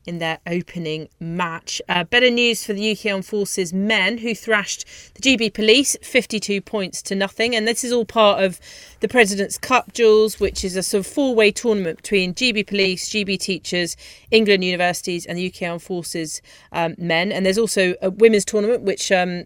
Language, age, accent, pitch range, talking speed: English, 40-59, British, 185-230 Hz, 190 wpm